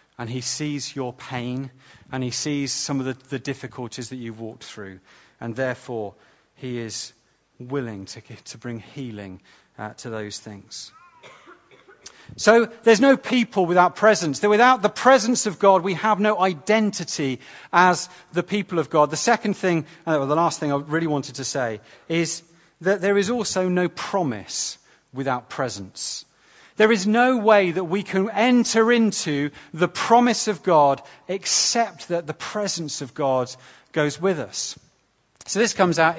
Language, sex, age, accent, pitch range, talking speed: English, male, 40-59, British, 130-190 Hz, 160 wpm